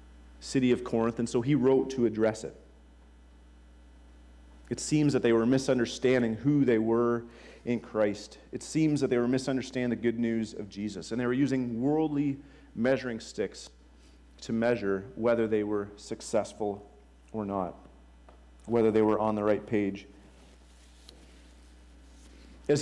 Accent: American